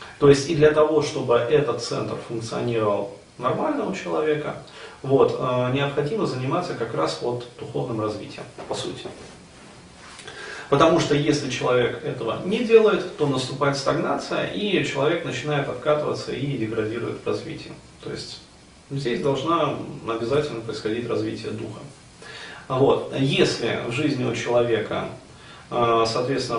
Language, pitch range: Russian, 110-145 Hz